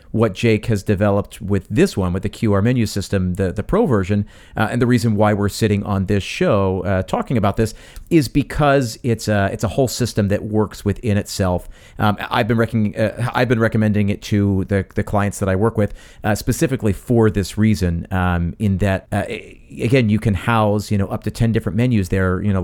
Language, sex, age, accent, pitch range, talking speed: English, male, 40-59, American, 100-115 Hz, 215 wpm